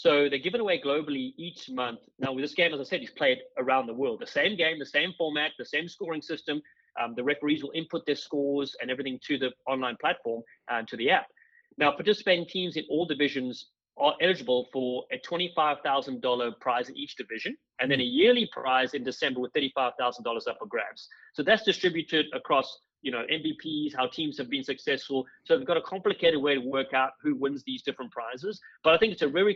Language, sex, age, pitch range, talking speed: English, male, 30-49, 130-175 Hz, 215 wpm